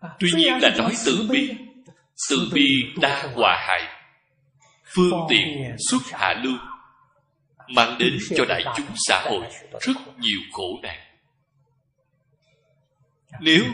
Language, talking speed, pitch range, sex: Vietnamese, 120 wpm, 135-185 Hz, male